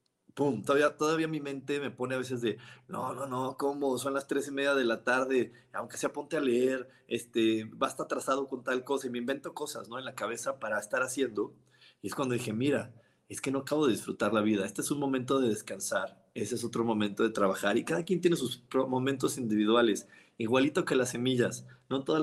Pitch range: 115-135 Hz